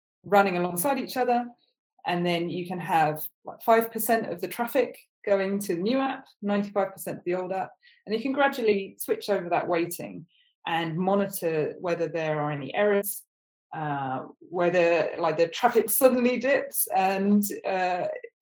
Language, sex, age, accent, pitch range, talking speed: English, female, 20-39, British, 170-240 Hz, 155 wpm